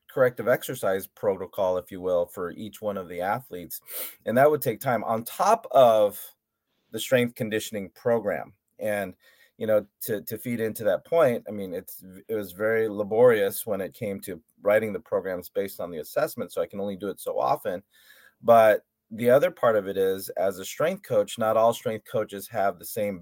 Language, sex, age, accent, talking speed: English, male, 30-49, American, 200 wpm